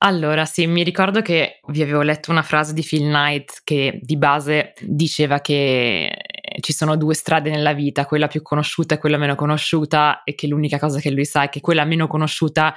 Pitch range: 145-160 Hz